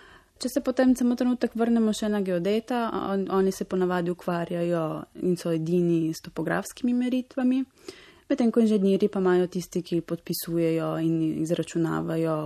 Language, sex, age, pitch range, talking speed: Italian, female, 20-39, 165-210 Hz, 140 wpm